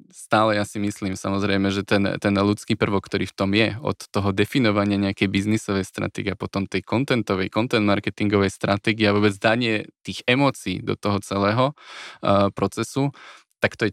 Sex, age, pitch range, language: male, 20-39, 100-110 Hz, Slovak